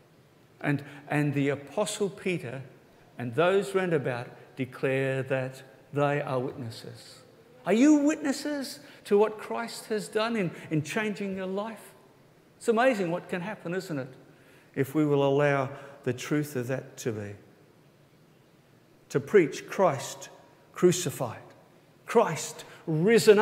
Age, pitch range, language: 50-69, 140-215 Hz, English